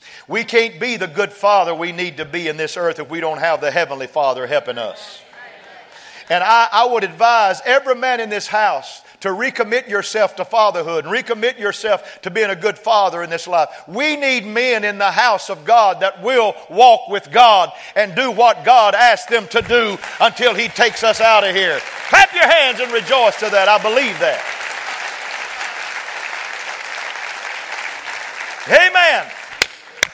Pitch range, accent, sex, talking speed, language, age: 155-235 Hz, American, male, 175 wpm, English, 50-69